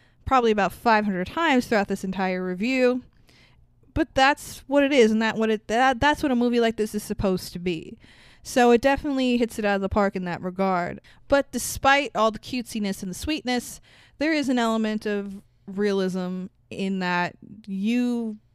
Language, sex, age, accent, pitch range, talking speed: English, female, 20-39, American, 190-235 Hz, 185 wpm